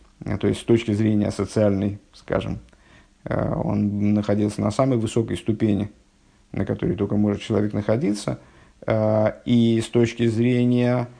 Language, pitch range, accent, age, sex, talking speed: Russian, 105-120 Hz, native, 50-69, male, 125 wpm